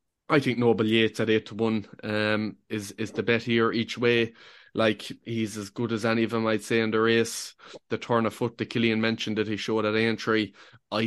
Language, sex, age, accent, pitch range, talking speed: English, male, 20-39, Irish, 110-120 Hz, 230 wpm